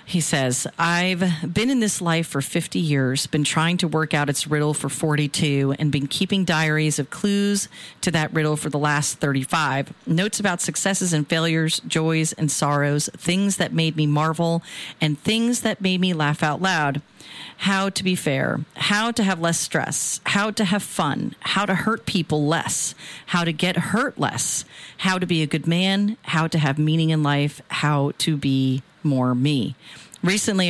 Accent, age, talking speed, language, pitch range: American, 40-59, 185 wpm, English, 150-180 Hz